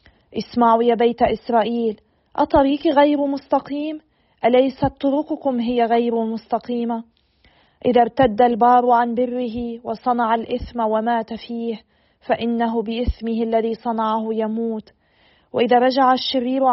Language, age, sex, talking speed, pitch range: Arabic, 40-59, female, 105 wpm, 230-250 Hz